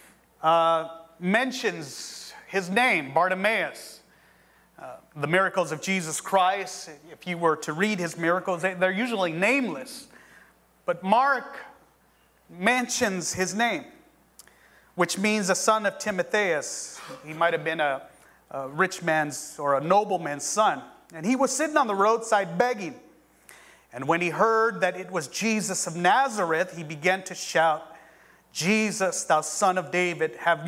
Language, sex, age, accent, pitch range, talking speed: English, male, 30-49, American, 165-225 Hz, 140 wpm